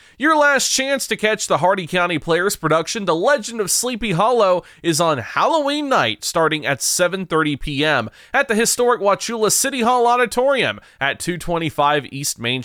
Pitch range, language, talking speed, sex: 160-225 Hz, English, 160 wpm, male